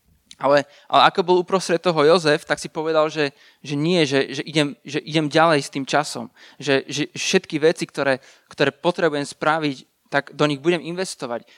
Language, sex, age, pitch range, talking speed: Slovak, male, 20-39, 145-185 Hz, 180 wpm